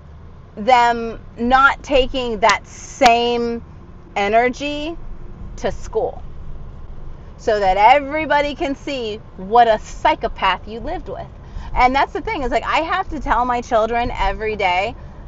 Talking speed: 130 wpm